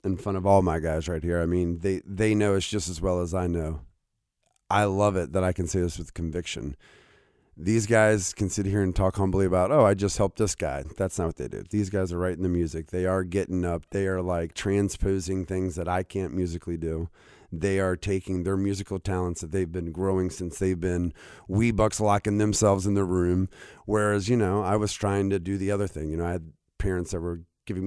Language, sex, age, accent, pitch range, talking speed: English, male, 30-49, American, 90-100 Hz, 235 wpm